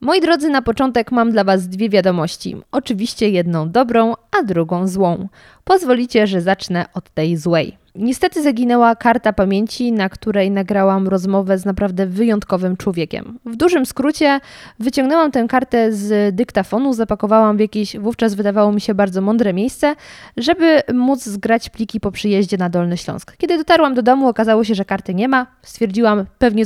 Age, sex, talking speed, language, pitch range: 20-39, female, 160 wpm, Polish, 195-250 Hz